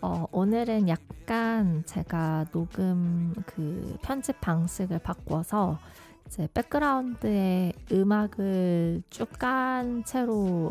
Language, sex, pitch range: Korean, female, 165-210 Hz